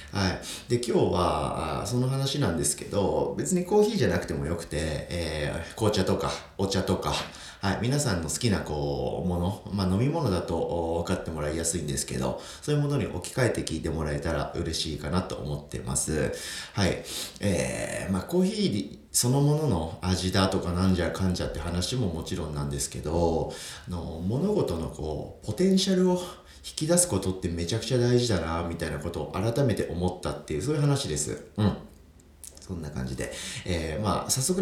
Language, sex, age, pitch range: Japanese, male, 40-59, 80-125 Hz